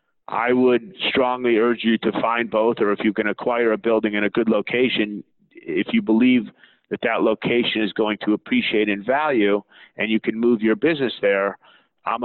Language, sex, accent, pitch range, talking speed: English, male, American, 110-125 Hz, 190 wpm